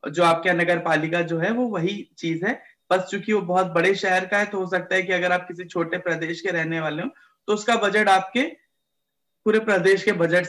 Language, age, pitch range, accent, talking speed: Hindi, 20-39, 150-195 Hz, native, 235 wpm